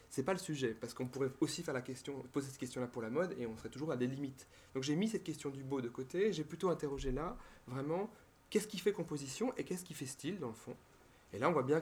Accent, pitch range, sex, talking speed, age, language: French, 120-155 Hz, male, 285 wpm, 30-49, French